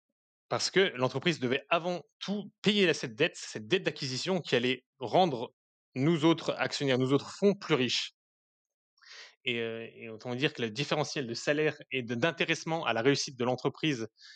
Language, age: French, 20-39